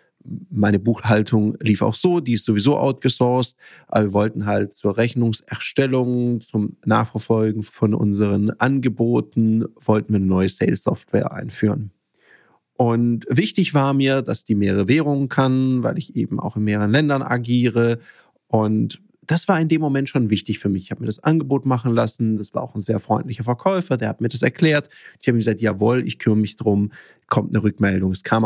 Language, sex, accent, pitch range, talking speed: German, male, German, 110-135 Hz, 180 wpm